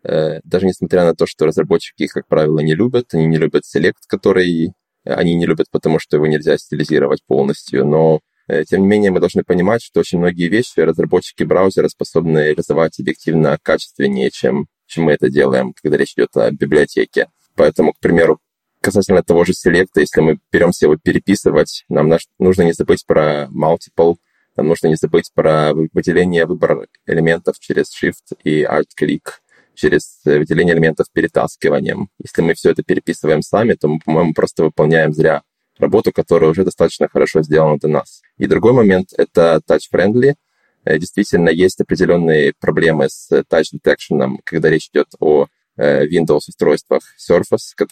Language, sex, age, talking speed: Russian, male, 20-39, 160 wpm